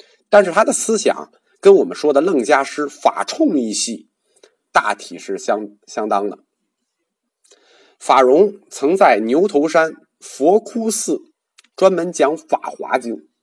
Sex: male